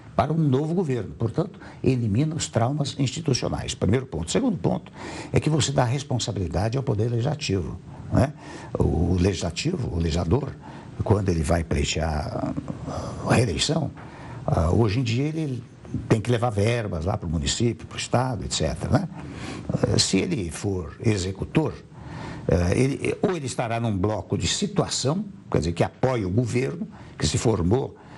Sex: male